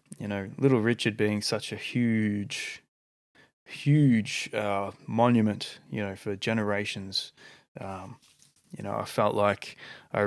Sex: male